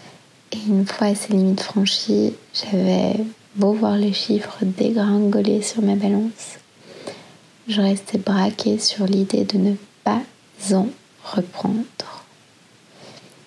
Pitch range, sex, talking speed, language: 195-225 Hz, female, 110 wpm, French